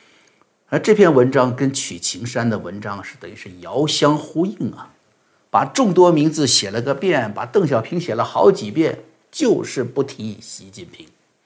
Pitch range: 115-155 Hz